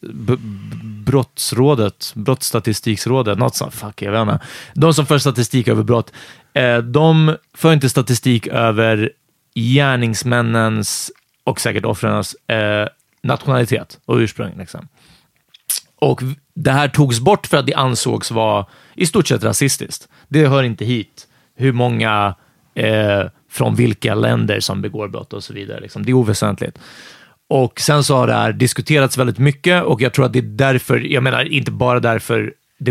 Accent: native